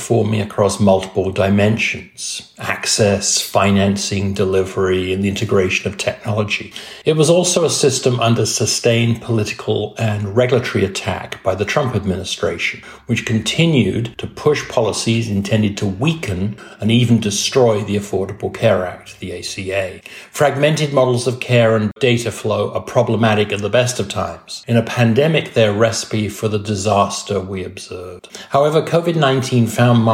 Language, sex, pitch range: English, male, 100-120 Hz